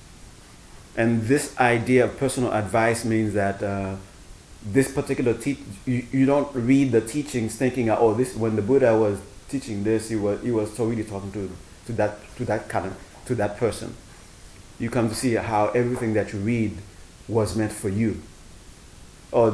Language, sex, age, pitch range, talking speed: English, male, 30-49, 95-120 Hz, 175 wpm